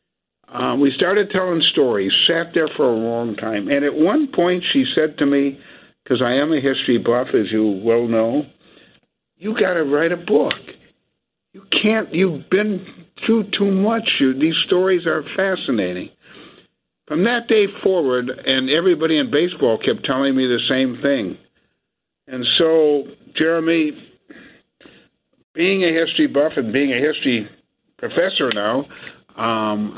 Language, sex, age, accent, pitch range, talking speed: English, male, 60-79, American, 130-185 Hz, 150 wpm